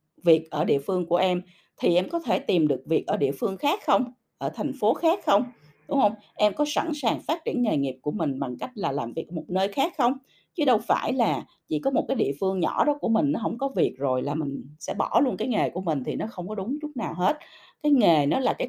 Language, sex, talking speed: Vietnamese, female, 275 wpm